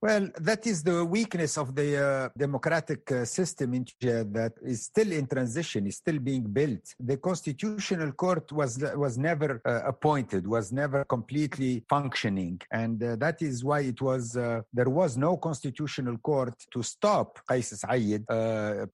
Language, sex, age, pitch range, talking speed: English, male, 50-69, 115-140 Hz, 165 wpm